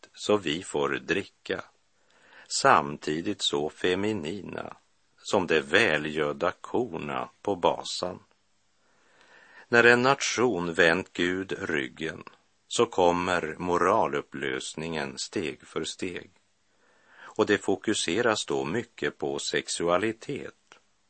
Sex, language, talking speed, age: male, Swedish, 90 wpm, 50-69